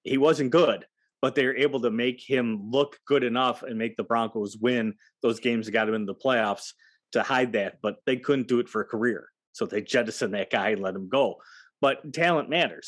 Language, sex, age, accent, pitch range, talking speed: English, male, 30-49, American, 115-145 Hz, 230 wpm